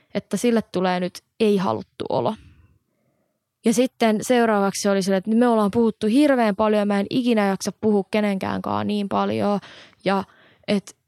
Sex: female